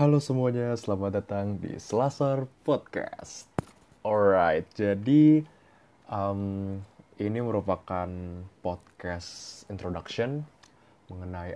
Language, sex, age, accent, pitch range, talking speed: Indonesian, male, 20-39, native, 90-110 Hz, 80 wpm